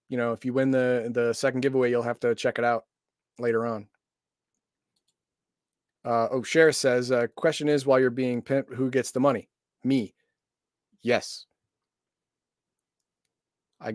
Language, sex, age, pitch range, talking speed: English, male, 30-49, 115-145 Hz, 145 wpm